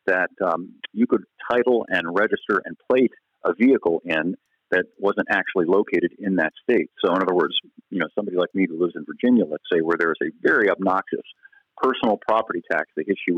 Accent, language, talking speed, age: American, English, 200 wpm, 40-59